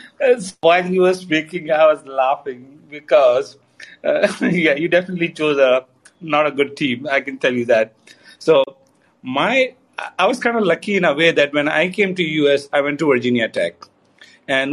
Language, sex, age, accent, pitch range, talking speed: English, male, 50-69, Indian, 135-175 Hz, 180 wpm